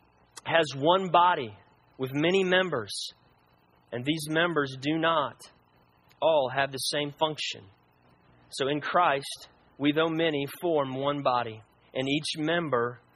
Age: 40-59